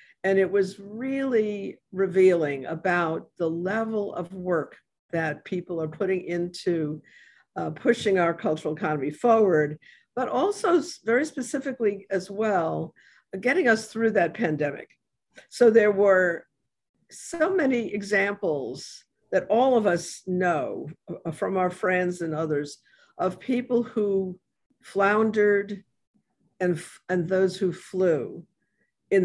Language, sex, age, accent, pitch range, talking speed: English, female, 50-69, American, 175-225 Hz, 120 wpm